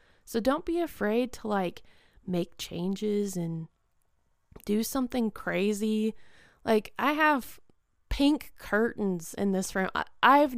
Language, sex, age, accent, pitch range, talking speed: English, female, 20-39, American, 175-225 Hz, 125 wpm